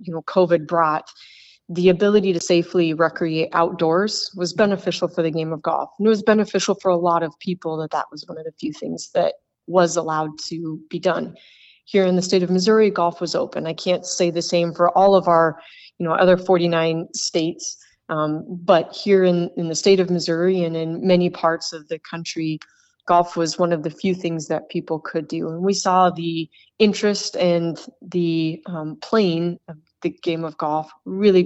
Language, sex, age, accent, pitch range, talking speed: English, female, 30-49, American, 165-185 Hz, 200 wpm